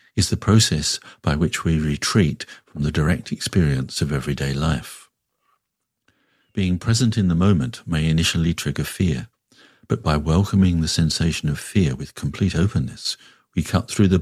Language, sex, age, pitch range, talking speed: English, male, 50-69, 80-100 Hz, 155 wpm